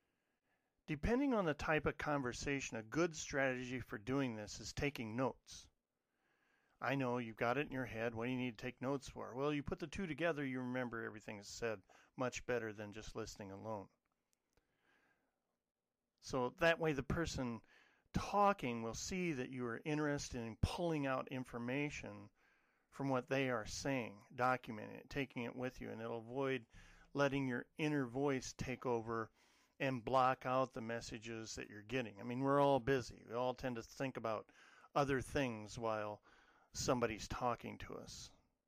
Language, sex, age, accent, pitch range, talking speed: English, male, 40-59, American, 115-140 Hz, 170 wpm